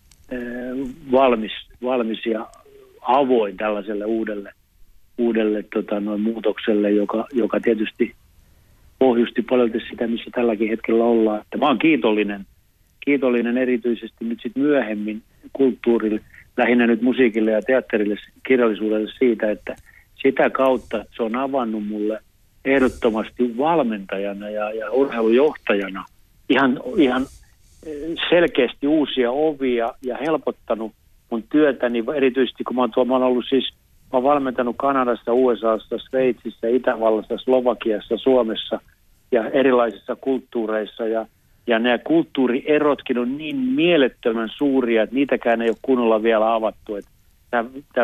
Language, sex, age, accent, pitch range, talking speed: Finnish, male, 60-79, native, 110-130 Hz, 115 wpm